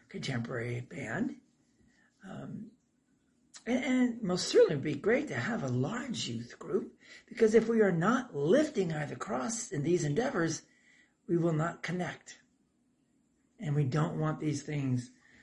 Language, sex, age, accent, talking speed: English, male, 60-79, American, 145 wpm